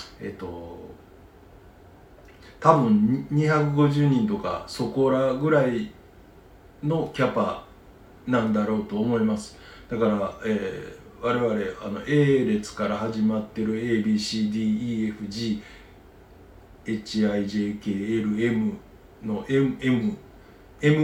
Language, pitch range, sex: Japanese, 95-125 Hz, male